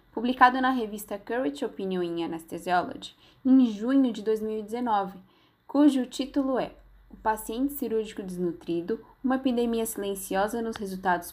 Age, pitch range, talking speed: 10-29, 185-260 Hz, 120 wpm